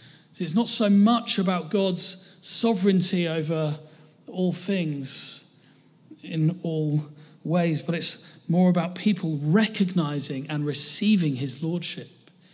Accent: British